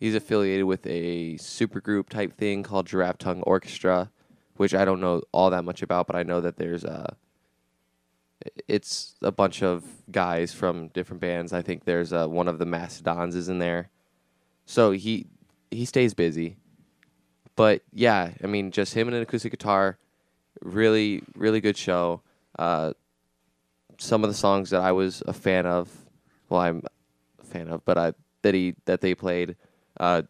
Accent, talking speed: American, 175 wpm